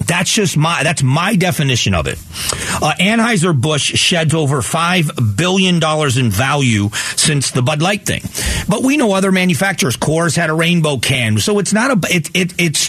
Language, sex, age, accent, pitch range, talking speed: English, male, 40-59, American, 140-175 Hz, 185 wpm